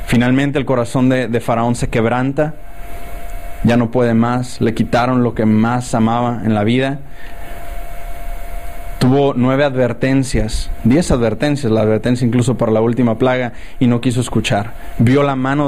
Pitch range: 115-145 Hz